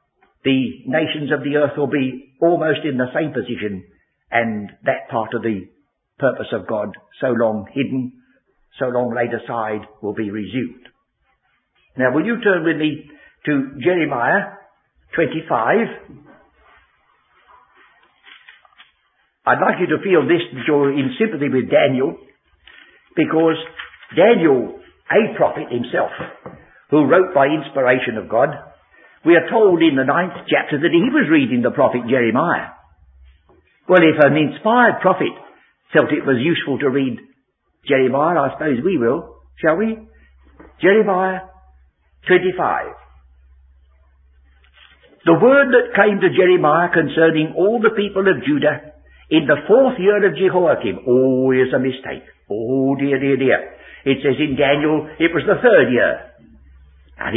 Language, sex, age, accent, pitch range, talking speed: English, male, 60-79, British, 115-170 Hz, 140 wpm